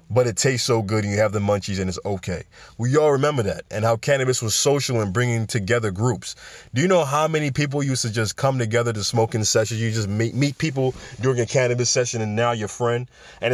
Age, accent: 20-39, American